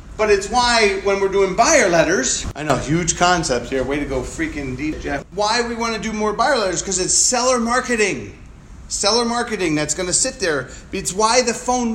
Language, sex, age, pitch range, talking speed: English, male, 30-49, 190-240 Hz, 205 wpm